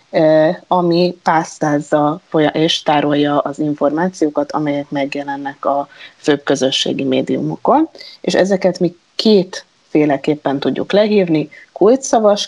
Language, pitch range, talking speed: Hungarian, 145-185 Hz, 95 wpm